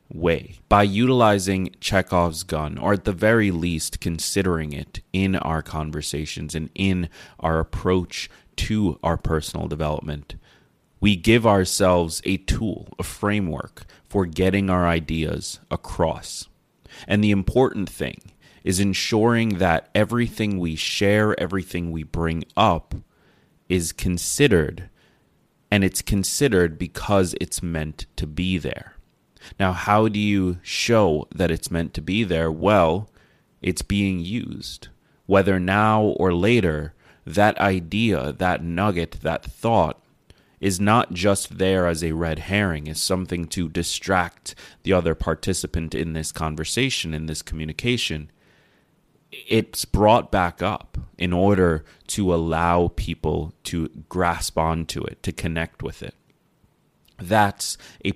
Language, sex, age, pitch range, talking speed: English, male, 30-49, 80-100 Hz, 130 wpm